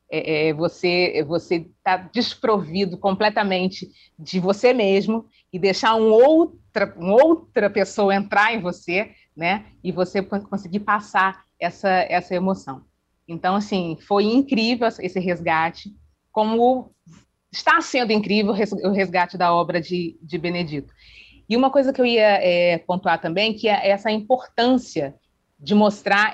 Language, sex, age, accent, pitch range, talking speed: Portuguese, female, 30-49, Brazilian, 180-225 Hz, 135 wpm